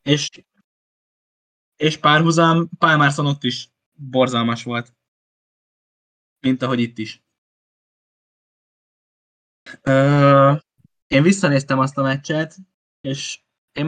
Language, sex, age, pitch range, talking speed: Hungarian, male, 10-29, 120-140 Hz, 90 wpm